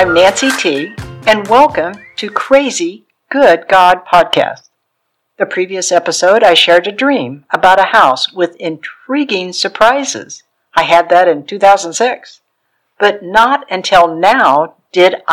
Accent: American